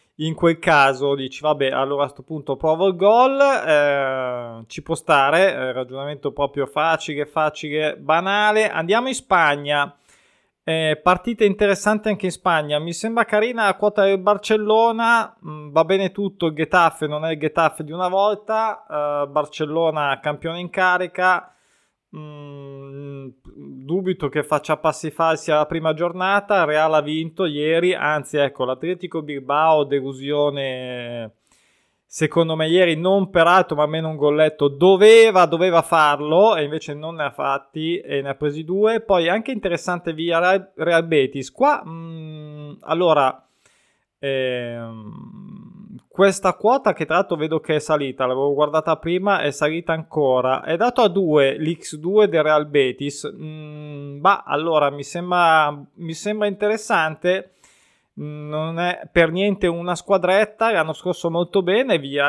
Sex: male